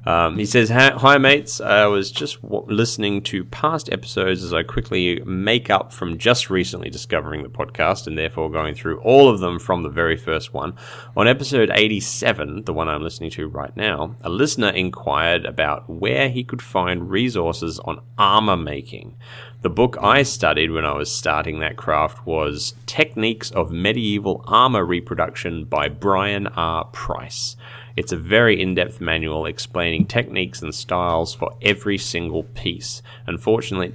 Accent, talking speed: Australian, 165 wpm